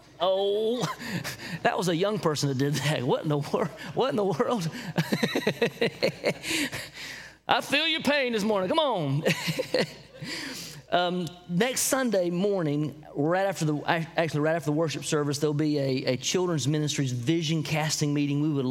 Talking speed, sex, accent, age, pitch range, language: 155 wpm, male, American, 30-49, 145-175 Hz, English